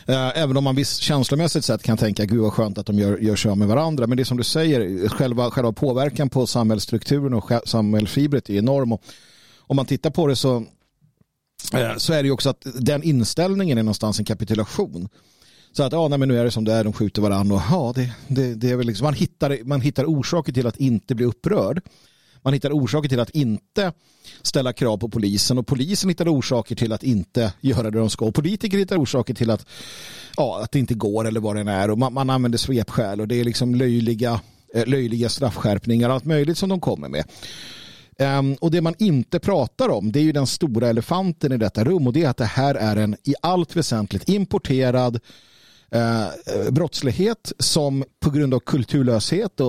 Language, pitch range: Swedish, 115-150 Hz